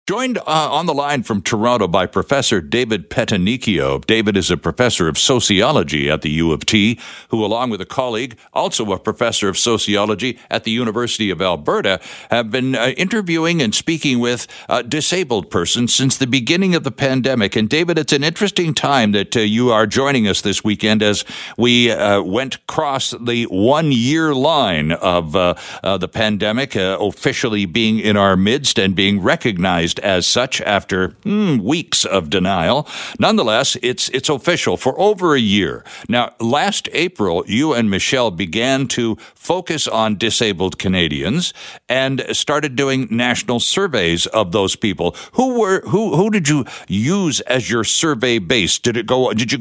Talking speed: 170 wpm